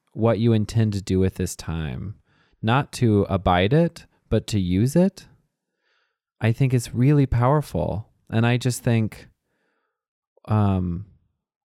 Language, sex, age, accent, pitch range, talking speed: English, male, 20-39, American, 95-125 Hz, 135 wpm